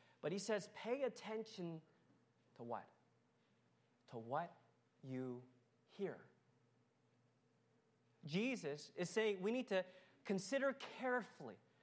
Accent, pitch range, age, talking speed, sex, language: American, 150-235 Hz, 30-49, 95 wpm, male, English